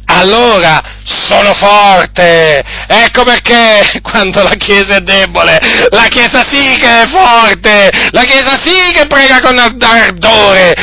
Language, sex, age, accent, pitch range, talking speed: Italian, male, 40-59, native, 170-235 Hz, 125 wpm